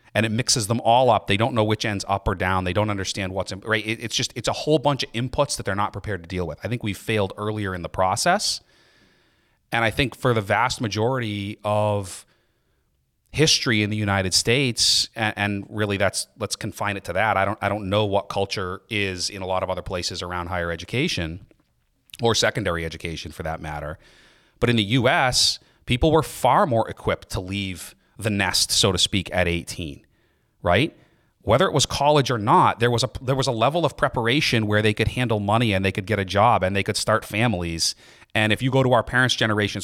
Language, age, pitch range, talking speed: English, 30-49, 95-125 Hz, 215 wpm